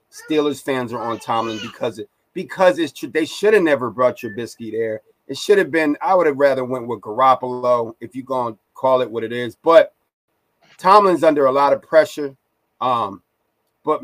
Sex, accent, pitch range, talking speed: male, American, 120-155 Hz, 195 wpm